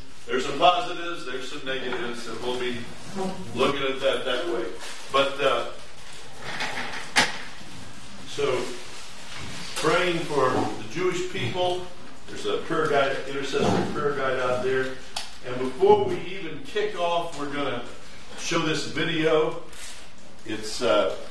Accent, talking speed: American, 125 wpm